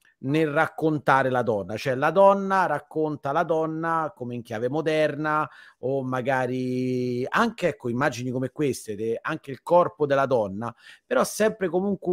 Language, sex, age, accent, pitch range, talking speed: Italian, male, 30-49, native, 135-165 Hz, 140 wpm